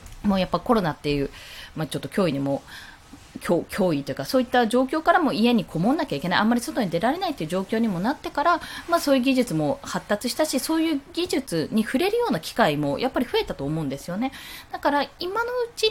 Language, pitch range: Japanese, 185-285 Hz